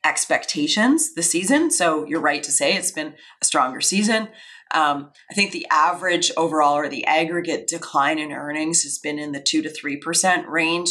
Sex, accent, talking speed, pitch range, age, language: female, American, 180 wpm, 150-215 Hz, 30-49, English